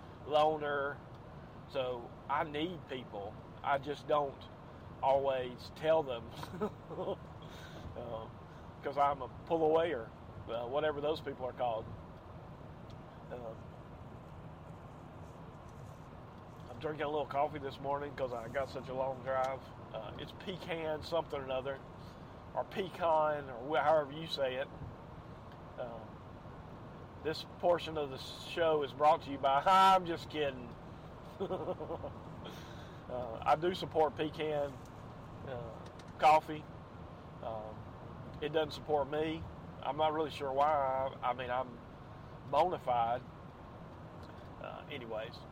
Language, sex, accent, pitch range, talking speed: English, male, American, 120-155 Hz, 115 wpm